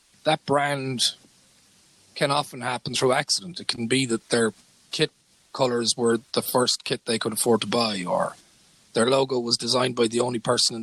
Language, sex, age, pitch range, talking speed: English, male, 30-49, 125-155 Hz, 185 wpm